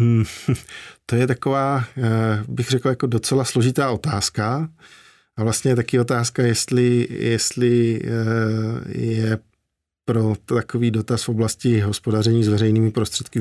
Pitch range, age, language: 105-120 Hz, 50-69, Czech